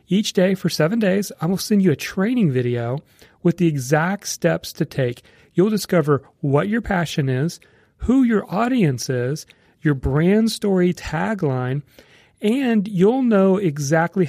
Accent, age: American, 40-59